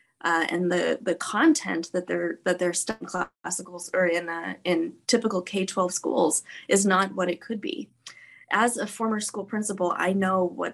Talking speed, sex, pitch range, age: 175 wpm, female, 180-225 Hz, 20-39